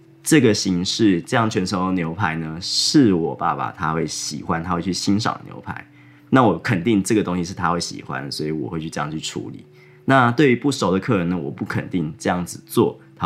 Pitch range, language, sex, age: 85-110 Hz, Chinese, male, 20-39